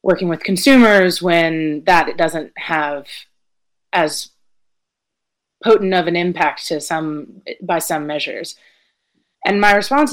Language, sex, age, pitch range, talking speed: English, female, 20-39, 155-185 Hz, 125 wpm